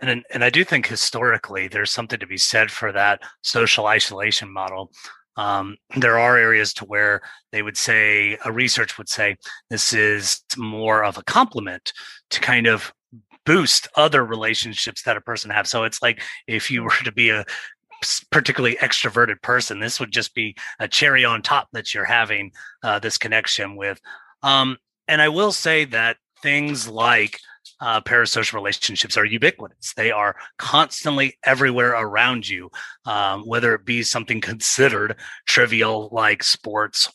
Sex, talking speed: male, 160 wpm